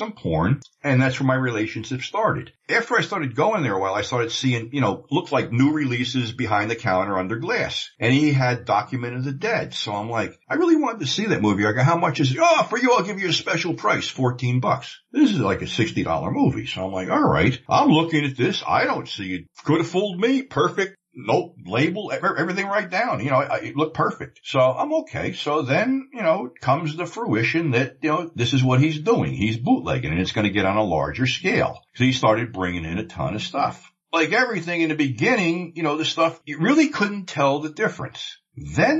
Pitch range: 110-170 Hz